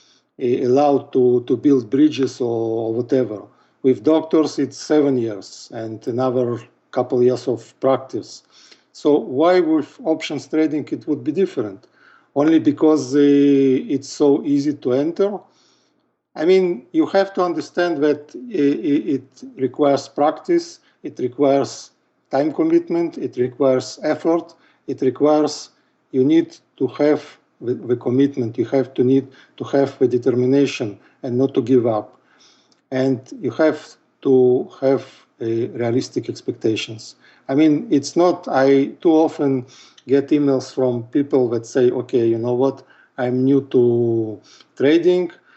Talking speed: 135 wpm